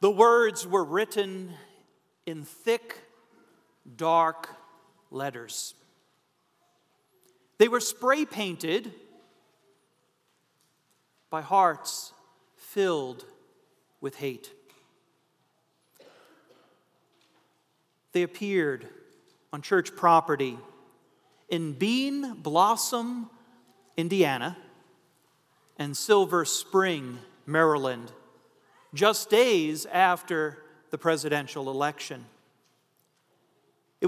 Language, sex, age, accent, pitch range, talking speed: English, male, 40-59, American, 165-210 Hz, 65 wpm